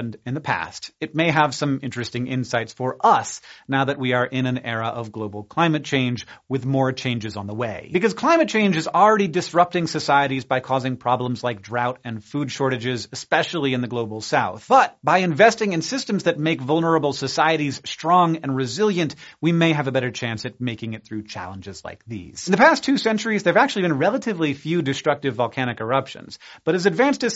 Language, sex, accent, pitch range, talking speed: English, male, American, 125-170 Hz, 200 wpm